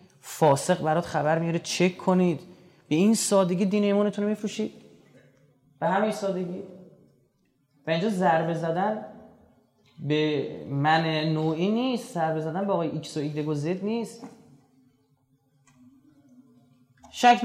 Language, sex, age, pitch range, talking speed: Persian, male, 30-49, 155-190 Hz, 110 wpm